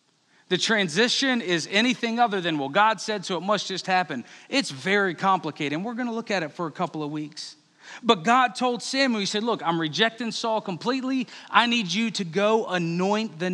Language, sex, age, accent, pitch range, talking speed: English, male, 40-59, American, 190-255 Hz, 210 wpm